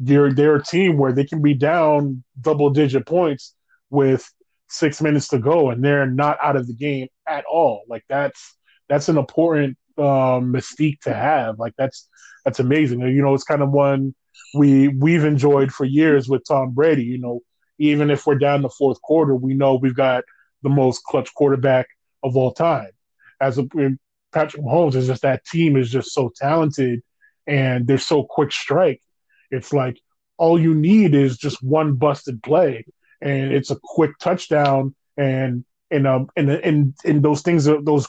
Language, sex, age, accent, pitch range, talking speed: English, male, 20-39, American, 135-155 Hz, 185 wpm